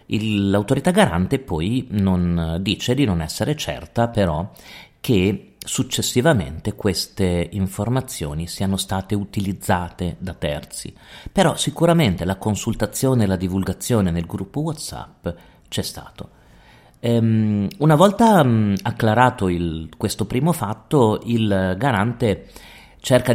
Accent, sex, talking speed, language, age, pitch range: native, male, 115 wpm, Italian, 40-59, 95-120 Hz